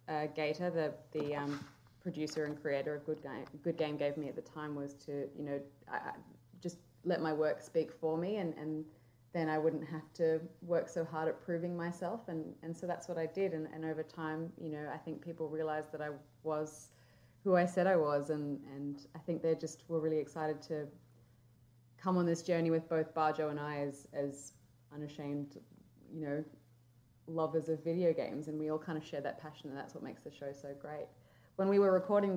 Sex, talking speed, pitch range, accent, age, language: female, 215 wpm, 140-165 Hz, Australian, 20-39, English